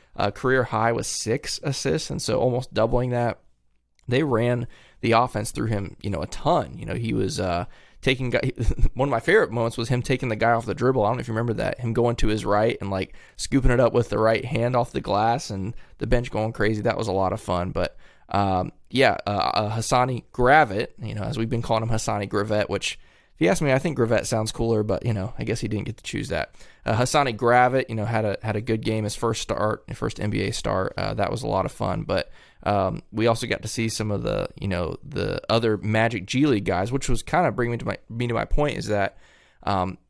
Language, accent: English, American